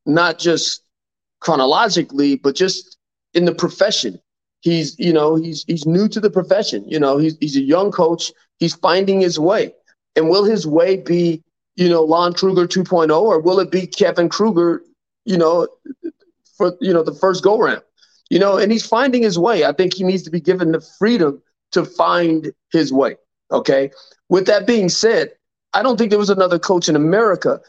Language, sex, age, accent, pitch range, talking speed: English, male, 40-59, American, 170-220 Hz, 190 wpm